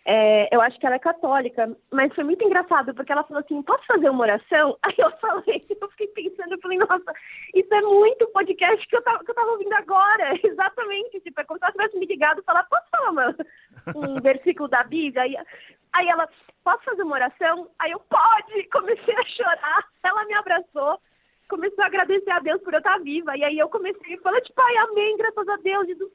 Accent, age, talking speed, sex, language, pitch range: Brazilian, 20-39, 210 wpm, female, English, 275-395 Hz